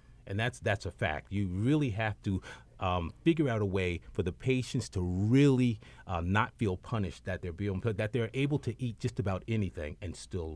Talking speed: 205 wpm